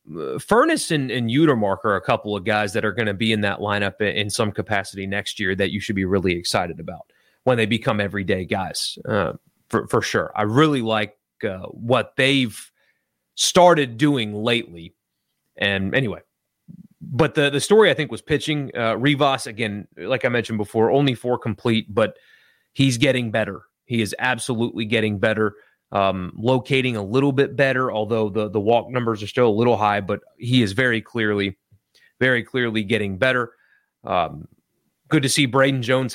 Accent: American